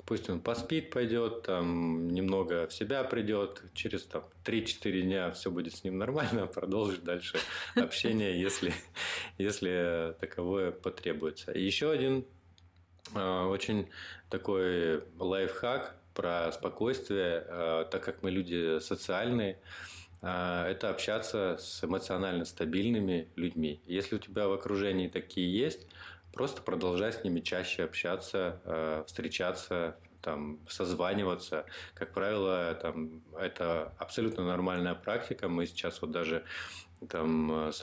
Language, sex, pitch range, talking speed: Russian, male, 85-100 Hz, 120 wpm